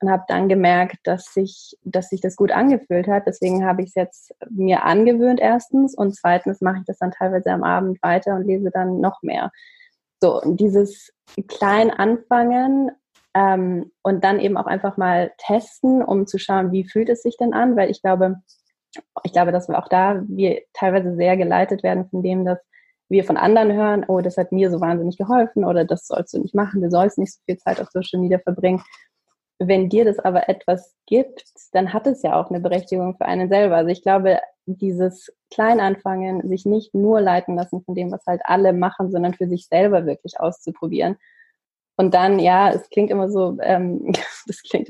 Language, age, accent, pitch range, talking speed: German, 20-39, German, 180-200 Hz, 200 wpm